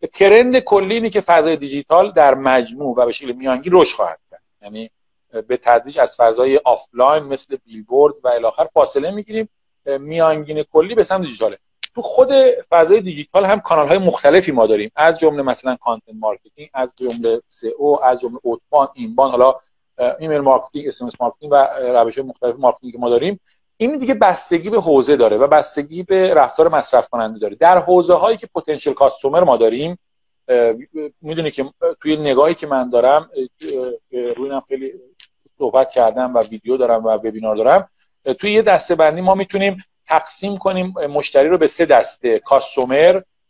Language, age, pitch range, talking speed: Persian, 50-69, 125-200 Hz, 160 wpm